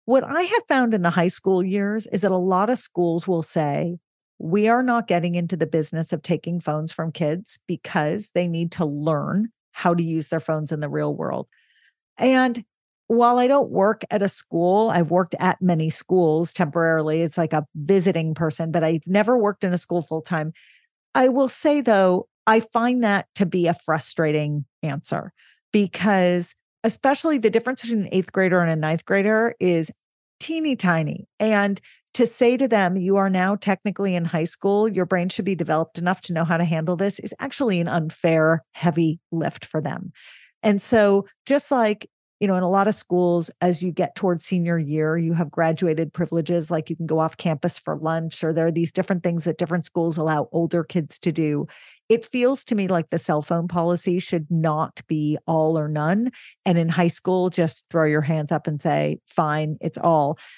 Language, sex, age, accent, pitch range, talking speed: English, female, 40-59, American, 165-210 Hz, 200 wpm